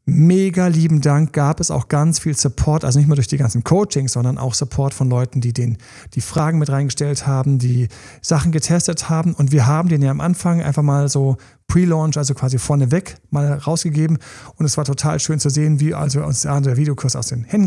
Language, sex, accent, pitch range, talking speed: German, male, German, 135-160 Hz, 215 wpm